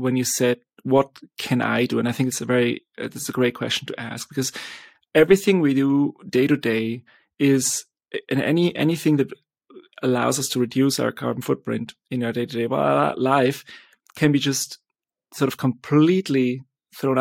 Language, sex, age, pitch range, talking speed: English, male, 30-49, 125-145 Hz, 175 wpm